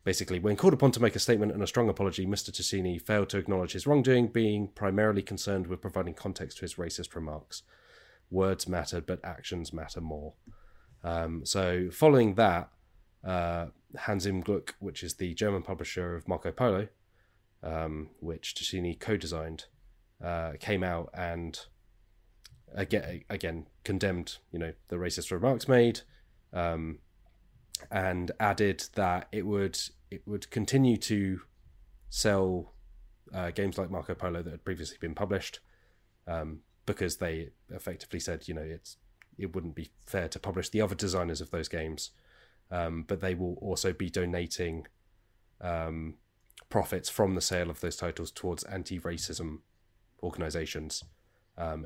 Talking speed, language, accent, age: 150 wpm, English, British, 30-49